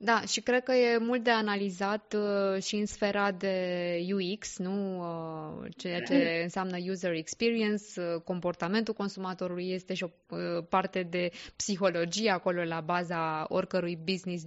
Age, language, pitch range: 20-39, Romanian, 175-215 Hz